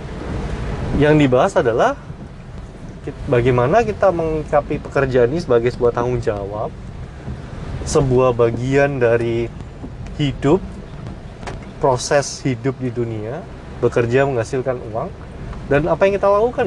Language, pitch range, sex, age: Indonesian, 115-145 Hz, male, 30-49